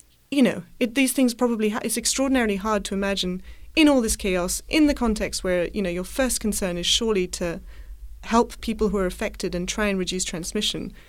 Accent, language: British, English